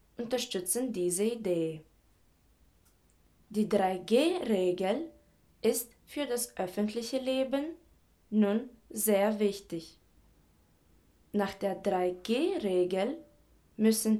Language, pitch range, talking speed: German, 180-220 Hz, 70 wpm